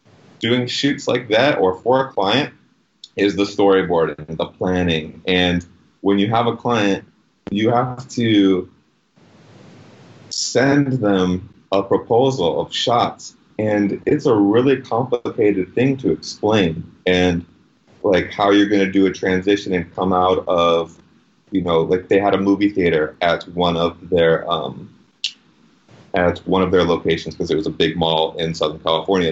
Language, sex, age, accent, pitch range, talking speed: English, male, 30-49, American, 90-105 Hz, 155 wpm